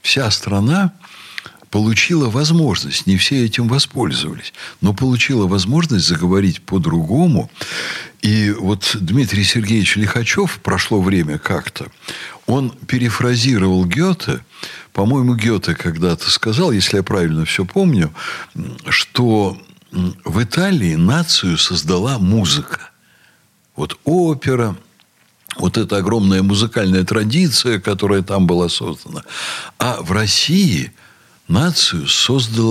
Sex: male